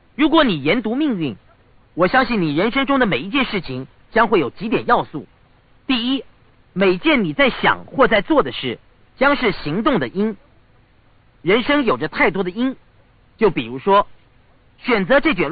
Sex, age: male, 40-59